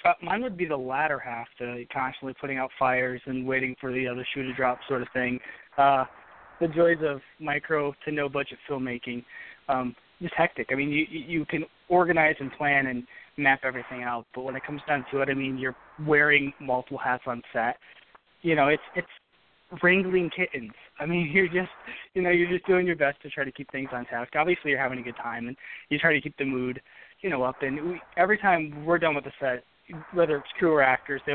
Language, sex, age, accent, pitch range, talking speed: English, male, 20-39, American, 130-160 Hz, 225 wpm